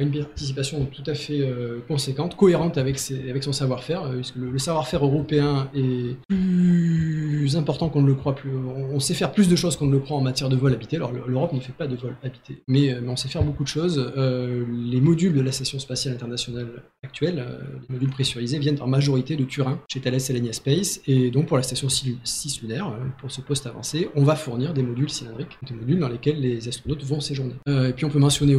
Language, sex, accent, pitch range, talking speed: French, male, French, 130-150 Hz, 240 wpm